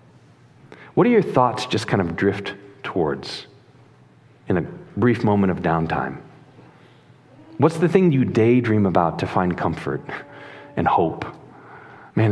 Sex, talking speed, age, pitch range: male, 130 wpm, 40-59, 100-135 Hz